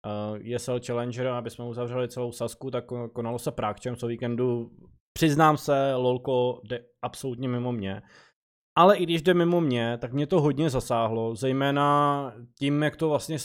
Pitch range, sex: 125-160 Hz, male